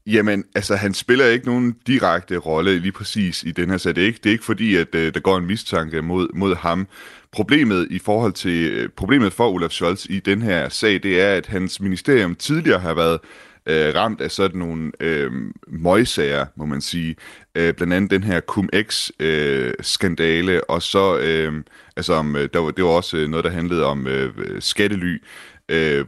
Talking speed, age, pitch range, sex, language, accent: 195 wpm, 30-49, 80-100 Hz, male, Danish, native